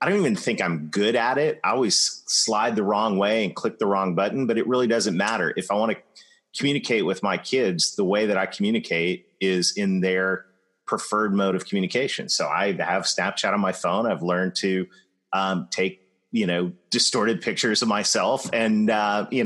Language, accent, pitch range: English, American, 95-125 Hz